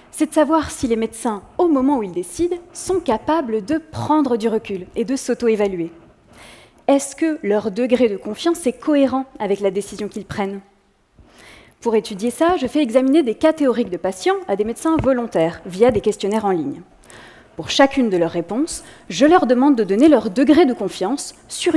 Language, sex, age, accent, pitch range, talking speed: French, female, 20-39, French, 205-280 Hz, 185 wpm